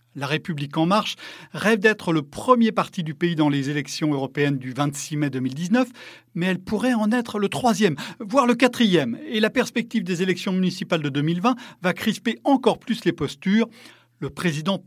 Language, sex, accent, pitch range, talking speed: French, male, French, 145-215 Hz, 180 wpm